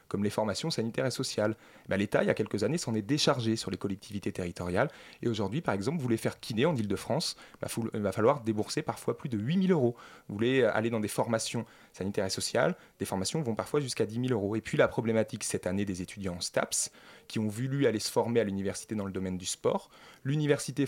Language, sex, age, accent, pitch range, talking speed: French, male, 20-39, French, 105-140 Hz, 235 wpm